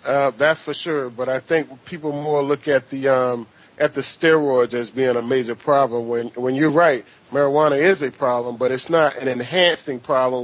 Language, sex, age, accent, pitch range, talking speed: English, male, 40-59, American, 140-205 Hz, 200 wpm